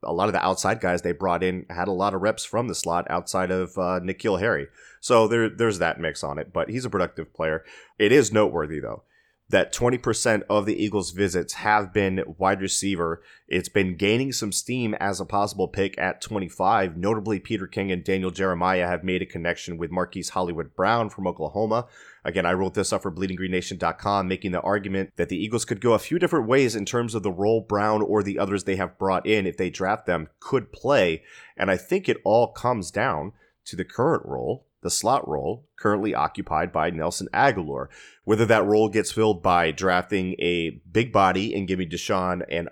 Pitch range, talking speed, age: 90-105 Hz, 200 wpm, 30-49